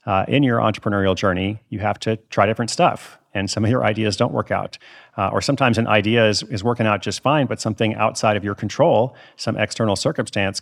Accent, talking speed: American, 220 wpm